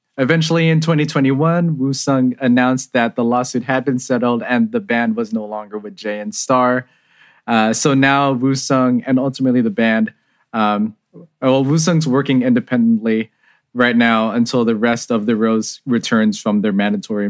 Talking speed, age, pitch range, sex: 160 wpm, 20-39, 115-145 Hz, male